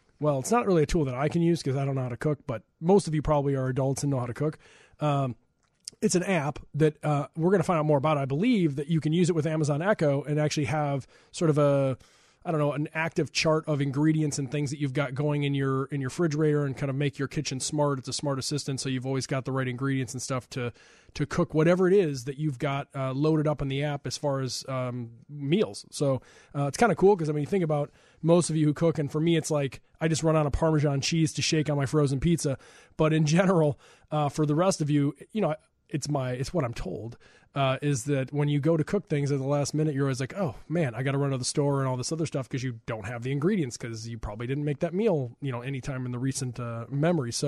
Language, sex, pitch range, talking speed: English, male, 135-160 Hz, 280 wpm